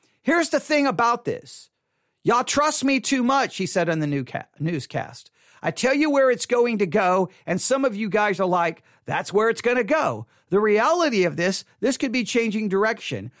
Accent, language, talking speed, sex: American, English, 210 wpm, male